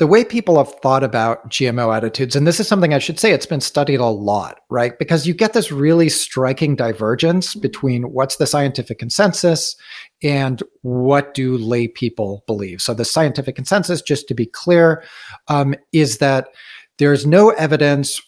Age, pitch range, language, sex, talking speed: 40-59, 120-155 Hz, English, male, 175 wpm